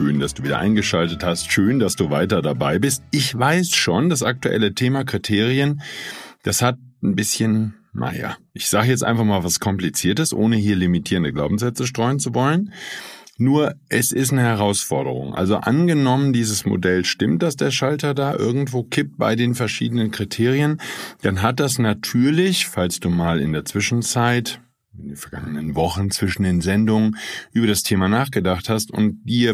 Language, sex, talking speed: German, male, 165 wpm